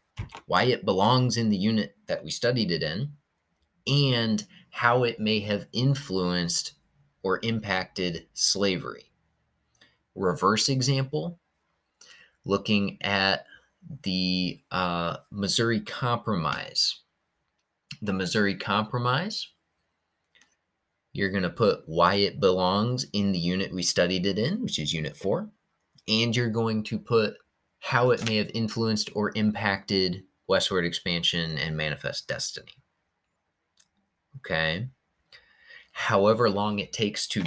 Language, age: English, 30-49